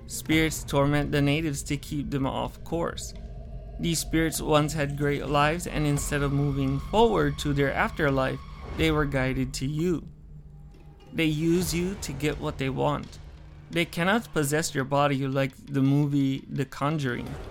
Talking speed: 160 wpm